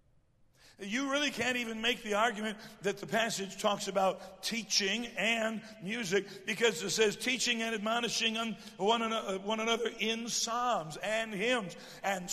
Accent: American